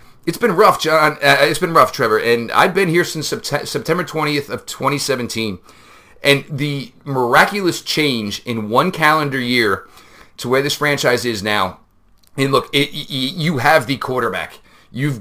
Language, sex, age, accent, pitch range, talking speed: English, male, 40-59, American, 125-155 Hz, 165 wpm